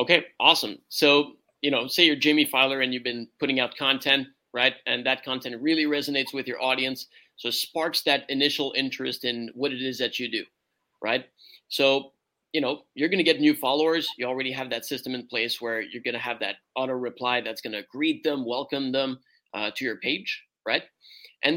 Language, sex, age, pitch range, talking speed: English, male, 30-49, 130-175 Hz, 210 wpm